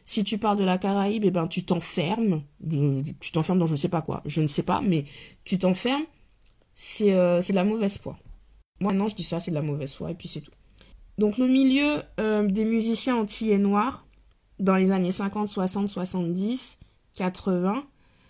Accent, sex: French, female